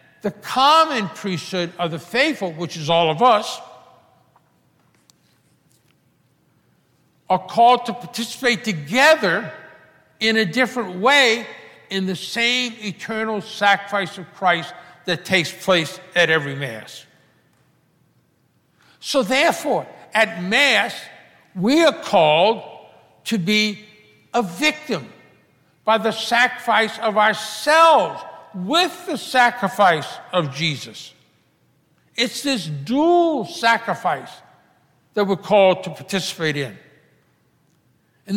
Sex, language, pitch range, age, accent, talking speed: male, English, 175-245 Hz, 60-79, American, 100 wpm